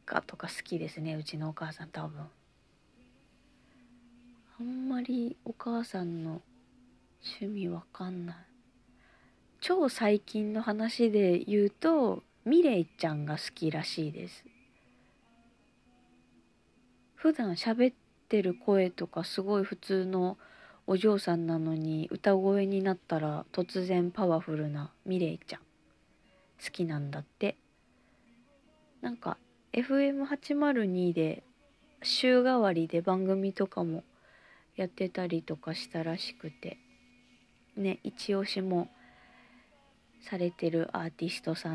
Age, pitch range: 40-59, 160-235 Hz